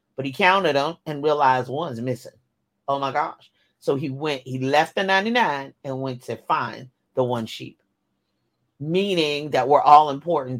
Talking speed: 170 wpm